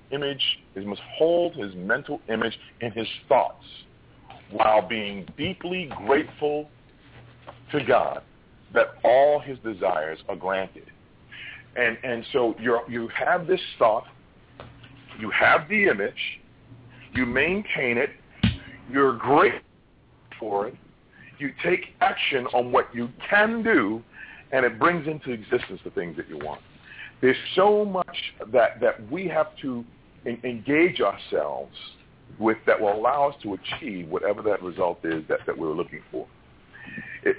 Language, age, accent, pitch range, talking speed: English, 40-59, American, 110-155 Hz, 140 wpm